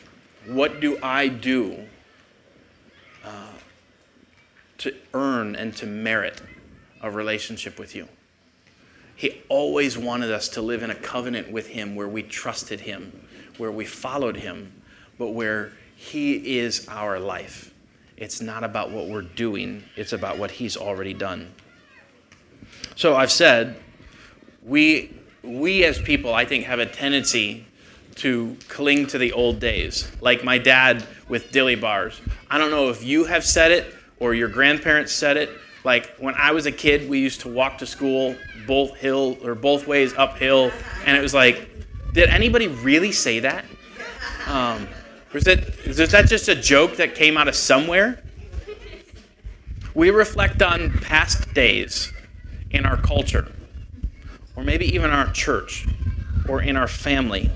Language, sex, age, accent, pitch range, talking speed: English, male, 30-49, American, 105-140 Hz, 150 wpm